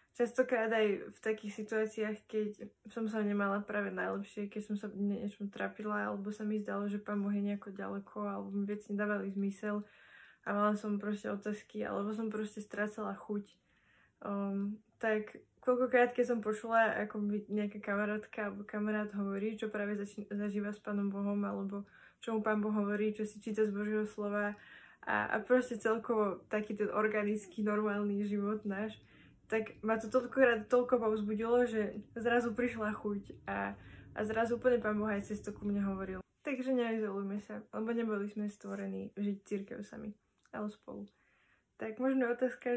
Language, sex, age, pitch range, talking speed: Slovak, female, 20-39, 205-220 Hz, 165 wpm